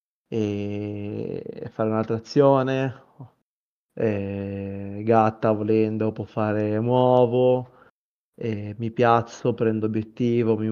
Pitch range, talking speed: 110-120 Hz, 90 wpm